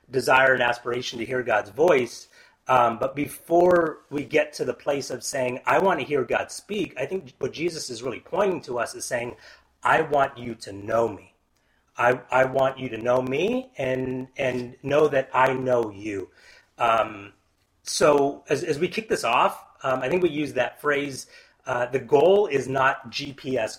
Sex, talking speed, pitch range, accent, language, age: male, 190 wpm, 120-160 Hz, American, English, 30-49